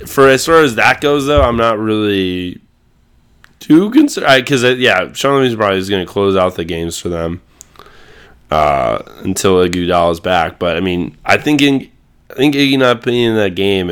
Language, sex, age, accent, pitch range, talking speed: English, male, 20-39, American, 90-115 Hz, 185 wpm